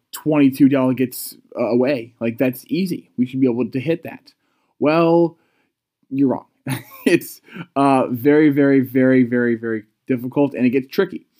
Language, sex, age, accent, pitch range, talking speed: English, male, 20-39, American, 125-155 Hz, 145 wpm